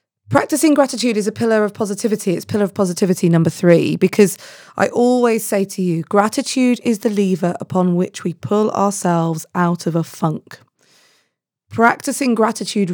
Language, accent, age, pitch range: English, British, 20-39, 175-220 Hz